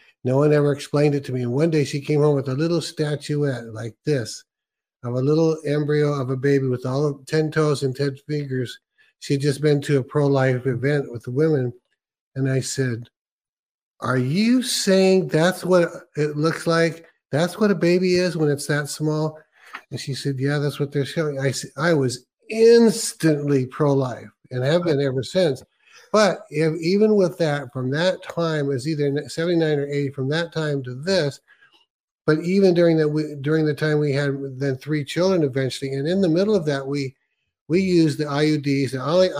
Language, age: English, 50-69